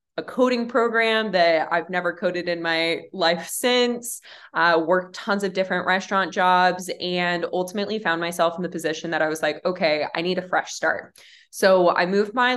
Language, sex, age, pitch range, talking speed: English, female, 20-39, 160-190 Hz, 185 wpm